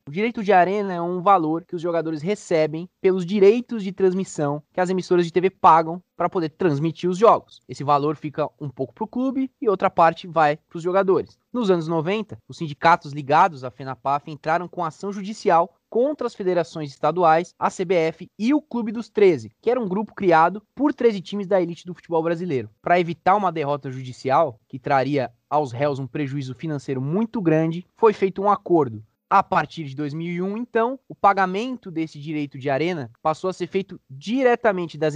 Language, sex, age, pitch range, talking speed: Portuguese, male, 20-39, 155-195 Hz, 190 wpm